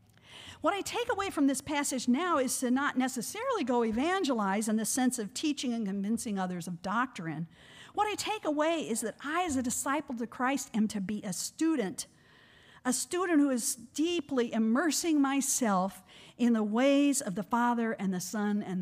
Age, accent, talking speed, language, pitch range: 50-69, American, 185 wpm, English, 200-280 Hz